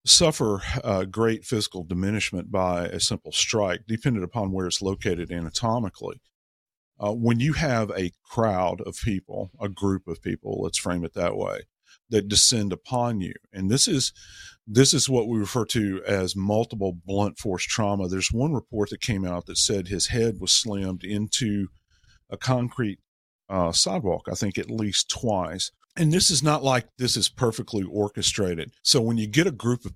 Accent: American